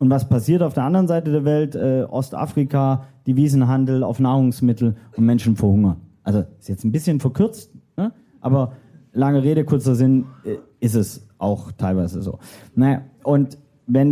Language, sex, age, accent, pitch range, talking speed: German, male, 30-49, German, 120-145 Hz, 160 wpm